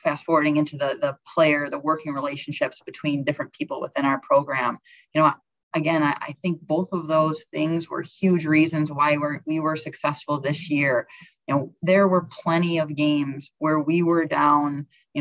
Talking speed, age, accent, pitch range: 180 wpm, 20-39, American, 150-175 Hz